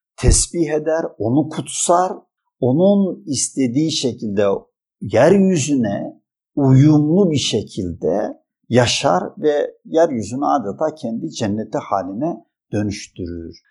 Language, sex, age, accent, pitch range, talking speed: Turkish, male, 50-69, native, 115-185 Hz, 85 wpm